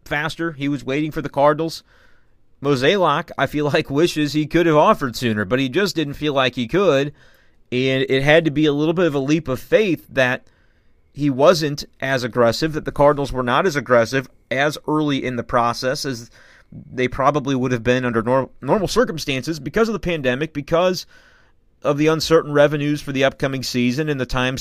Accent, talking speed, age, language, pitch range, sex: American, 195 wpm, 30-49, English, 130-155 Hz, male